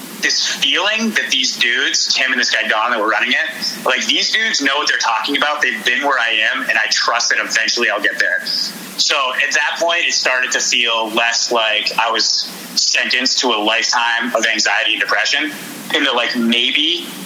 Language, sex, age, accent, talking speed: English, male, 30-49, American, 205 wpm